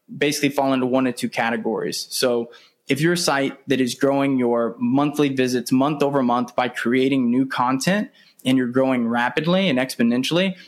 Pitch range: 125-150 Hz